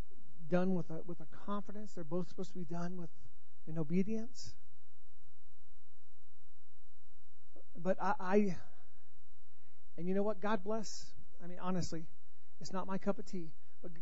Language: English